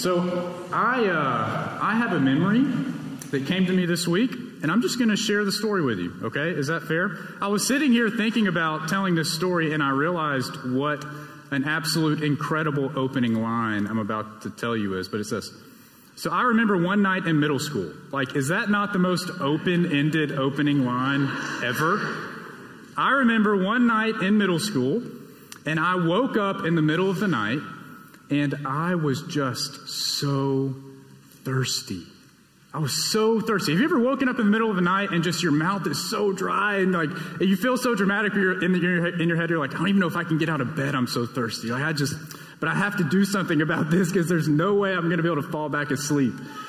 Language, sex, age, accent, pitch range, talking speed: English, male, 30-49, American, 140-195 Hz, 220 wpm